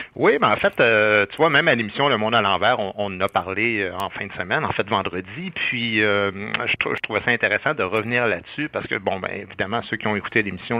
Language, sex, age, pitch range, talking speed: French, male, 60-79, 100-120 Hz, 265 wpm